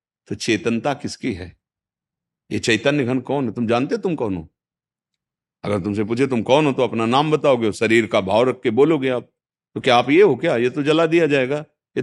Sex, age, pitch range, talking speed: male, 50-69, 100-130 Hz, 215 wpm